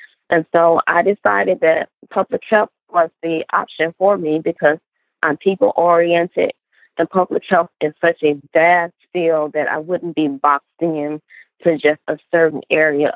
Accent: American